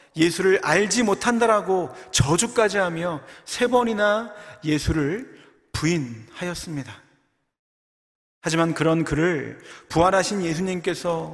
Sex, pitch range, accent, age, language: male, 145-190 Hz, native, 40-59, Korean